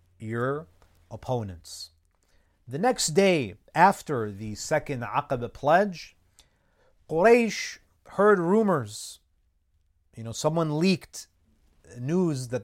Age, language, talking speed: 30-49, English, 90 wpm